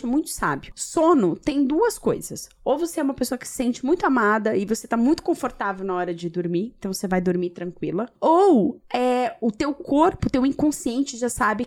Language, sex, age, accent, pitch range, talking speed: Portuguese, female, 20-39, Brazilian, 205-280 Hz, 205 wpm